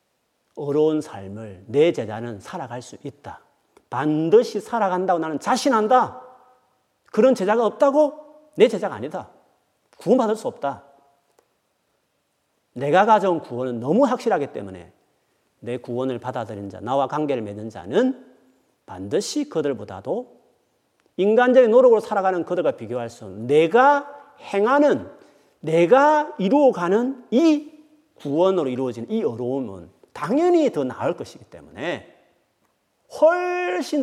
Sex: male